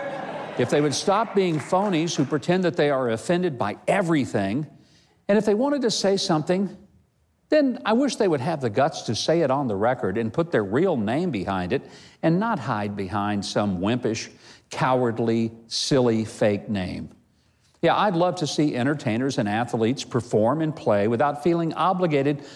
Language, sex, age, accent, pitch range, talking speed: English, male, 50-69, American, 115-175 Hz, 175 wpm